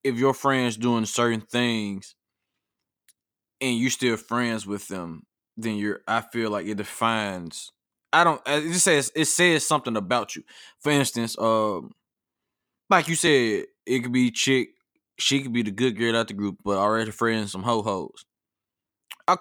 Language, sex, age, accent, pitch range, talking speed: English, male, 20-39, American, 120-170 Hz, 165 wpm